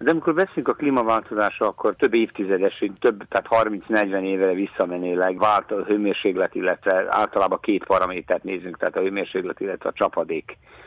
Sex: male